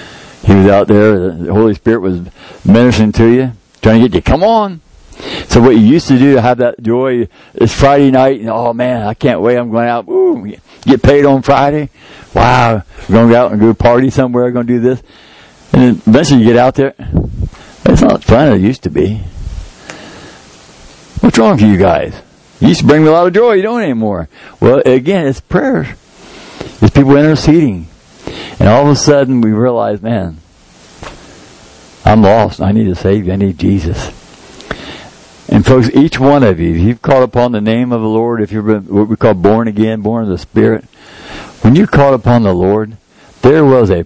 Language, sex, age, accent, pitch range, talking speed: English, male, 60-79, American, 100-130 Hz, 200 wpm